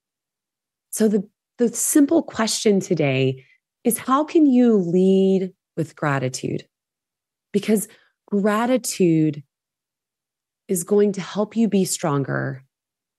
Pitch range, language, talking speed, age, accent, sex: 185-255 Hz, English, 100 wpm, 20-39, American, female